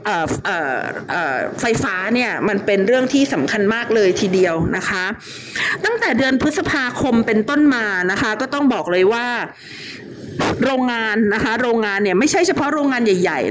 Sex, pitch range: female, 210-280 Hz